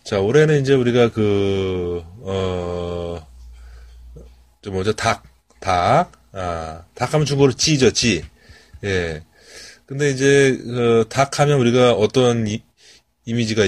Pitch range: 90-120 Hz